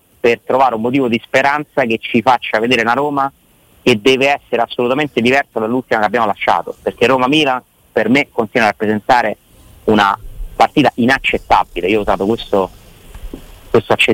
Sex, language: male, Italian